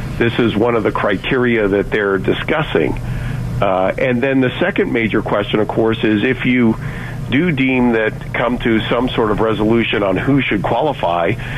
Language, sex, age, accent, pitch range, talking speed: English, male, 50-69, American, 110-135 Hz, 175 wpm